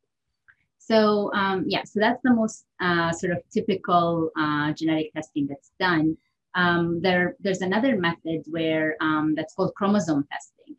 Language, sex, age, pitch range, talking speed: English, female, 30-49, 155-185 Hz, 150 wpm